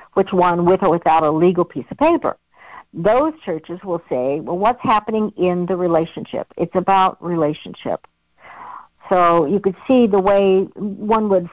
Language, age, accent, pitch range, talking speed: English, 60-79, American, 170-230 Hz, 160 wpm